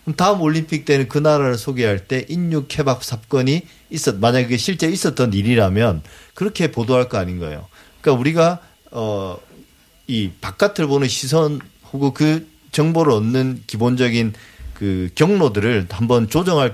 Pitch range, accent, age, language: 110-155 Hz, native, 40-59, Korean